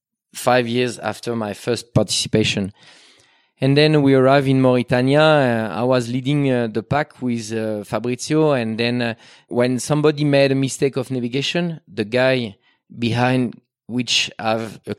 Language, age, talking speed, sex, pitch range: English, 30-49, 150 wpm, male, 110-130 Hz